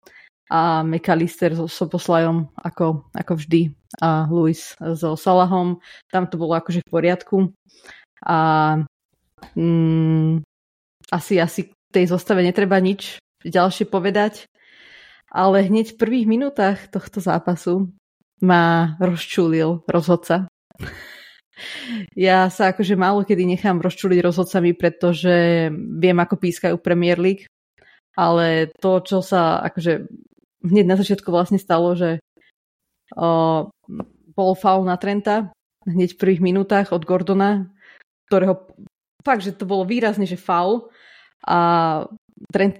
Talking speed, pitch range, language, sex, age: 115 wpm, 170-195 Hz, Slovak, female, 20-39